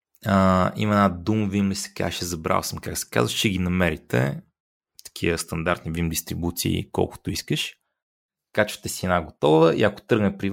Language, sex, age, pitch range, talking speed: Bulgarian, male, 30-49, 85-105 Hz, 170 wpm